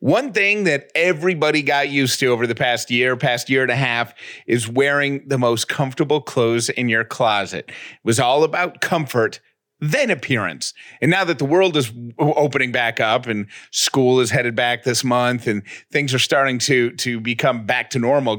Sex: male